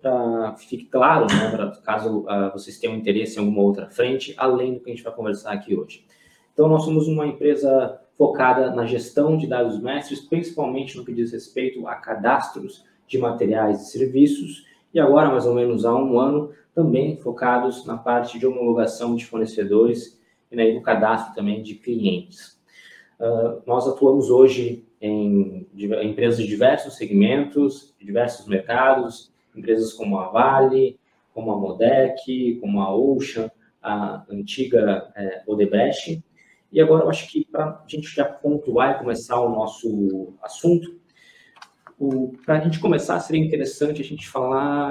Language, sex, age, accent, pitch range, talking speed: Portuguese, male, 20-39, Brazilian, 115-145 Hz, 160 wpm